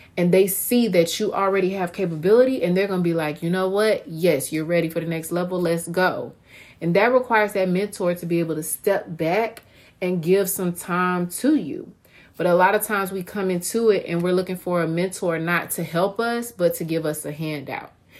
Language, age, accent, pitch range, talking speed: English, 30-49, American, 170-200 Hz, 220 wpm